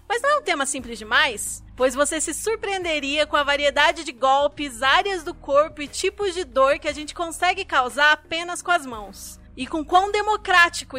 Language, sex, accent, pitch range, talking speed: Portuguese, female, Brazilian, 255-330 Hz, 195 wpm